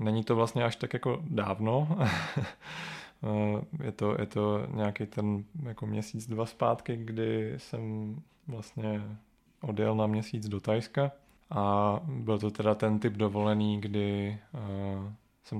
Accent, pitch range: native, 105-120 Hz